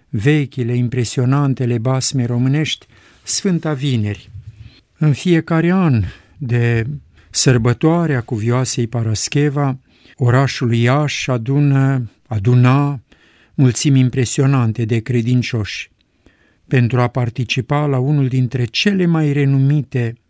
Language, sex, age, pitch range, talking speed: Romanian, male, 50-69, 120-140 Hz, 90 wpm